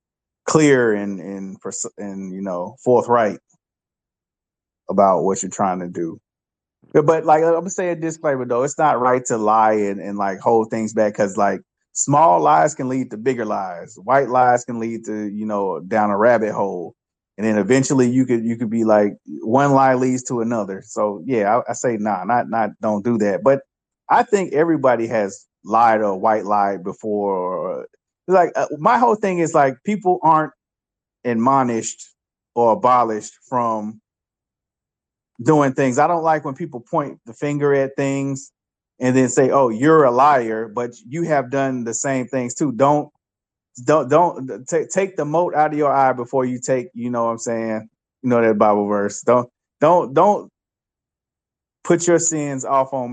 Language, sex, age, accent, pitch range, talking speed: English, male, 30-49, American, 110-145 Hz, 185 wpm